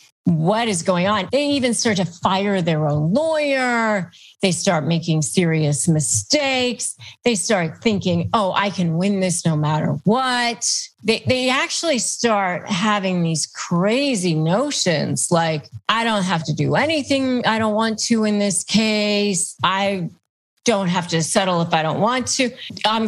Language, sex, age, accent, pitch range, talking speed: English, female, 40-59, American, 170-230 Hz, 160 wpm